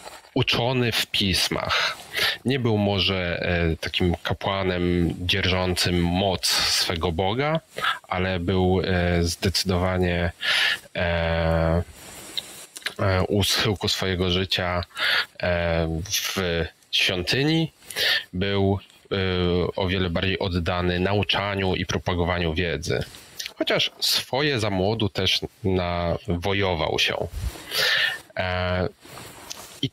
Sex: male